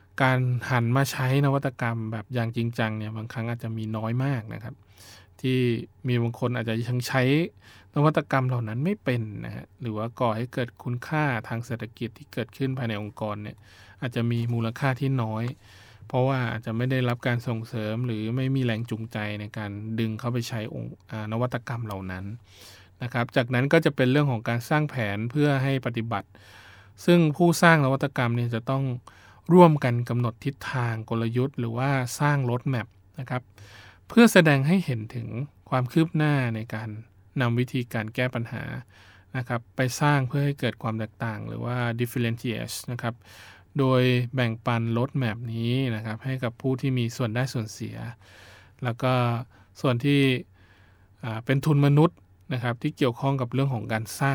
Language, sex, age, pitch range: Thai, male, 20-39, 110-130 Hz